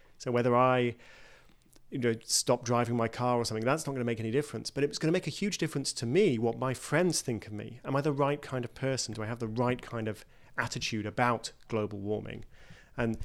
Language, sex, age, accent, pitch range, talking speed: English, male, 40-59, British, 110-135 Hz, 240 wpm